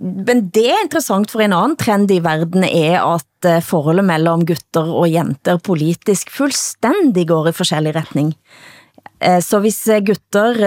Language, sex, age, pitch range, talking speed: Danish, female, 30-49, 170-215 Hz, 145 wpm